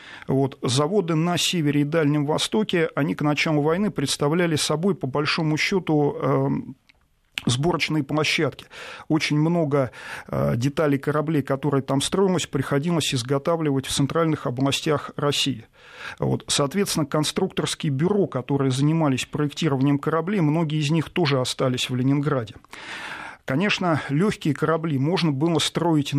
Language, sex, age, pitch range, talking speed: Russian, male, 40-59, 140-165 Hz, 115 wpm